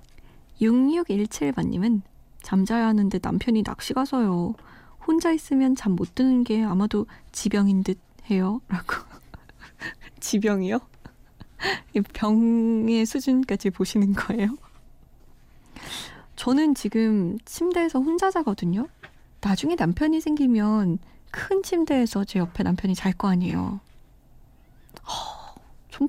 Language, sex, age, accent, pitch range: Korean, female, 20-39, native, 200-270 Hz